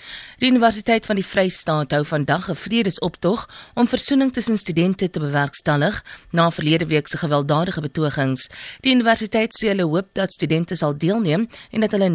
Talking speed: 160 wpm